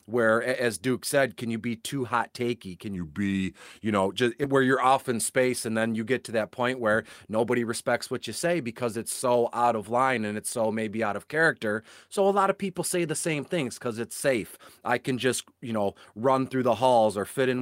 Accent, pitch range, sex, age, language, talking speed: American, 110-135 Hz, male, 30-49, English, 240 wpm